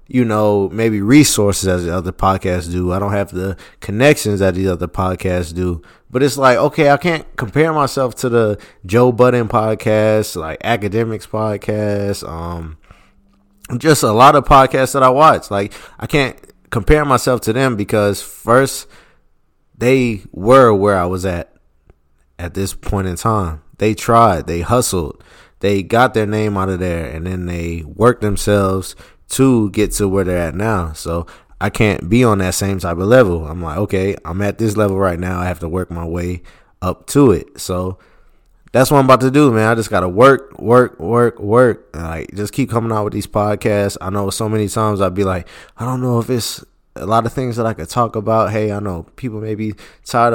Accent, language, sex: American, English, male